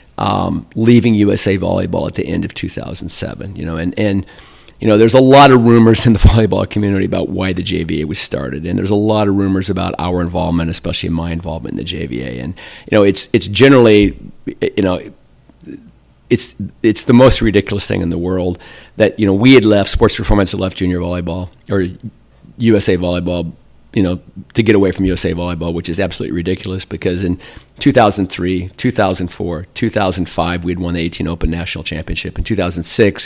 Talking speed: 185 wpm